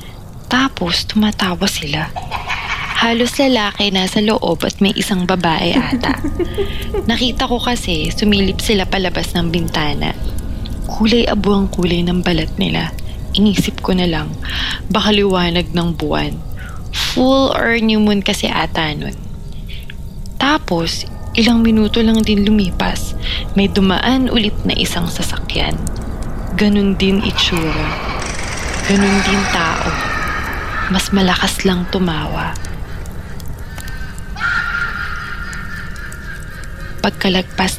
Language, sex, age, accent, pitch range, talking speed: Filipino, female, 20-39, native, 175-225 Hz, 100 wpm